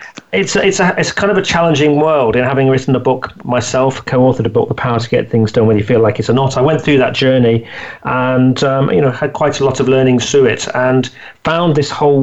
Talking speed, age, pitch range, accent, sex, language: 255 wpm, 40-59, 120-150 Hz, British, male, English